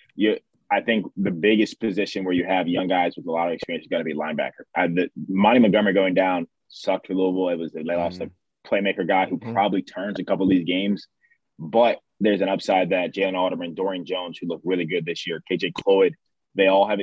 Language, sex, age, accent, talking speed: English, male, 20-39, American, 235 wpm